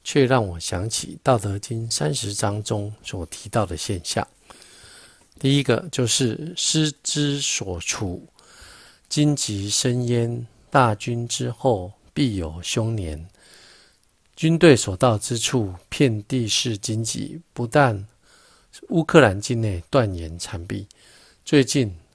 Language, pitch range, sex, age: Chinese, 95-130 Hz, male, 50-69